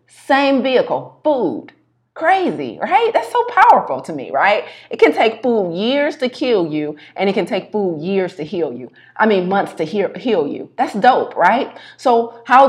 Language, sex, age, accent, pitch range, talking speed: English, female, 30-49, American, 165-215 Hz, 185 wpm